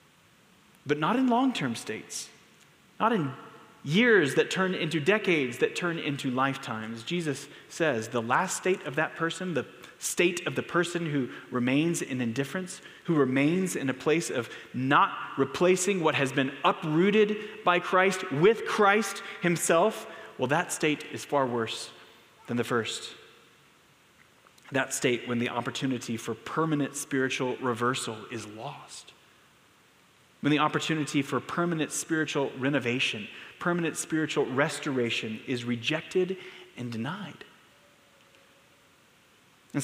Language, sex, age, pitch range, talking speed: English, male, 30-49, 125-180 Hz, 130 wpm